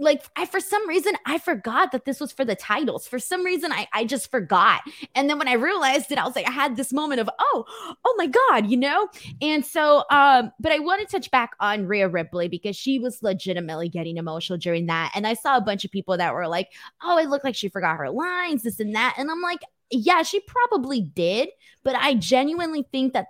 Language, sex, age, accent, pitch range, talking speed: English, female, 20-39, American, 195-270 Hz, 240 wpm